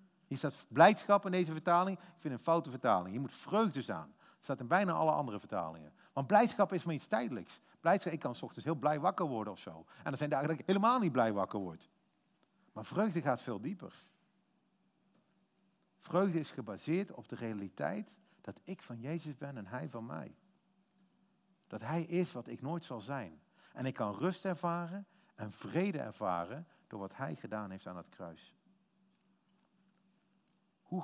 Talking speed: 185 wpm